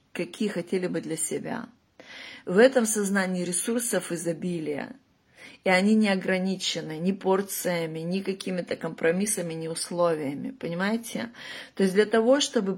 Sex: female